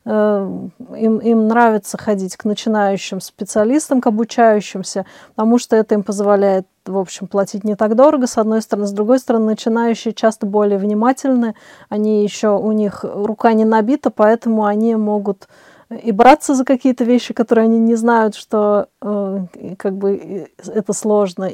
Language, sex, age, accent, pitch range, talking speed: Russian, female, 20-39, native, 200-230 Hz, 145 wpm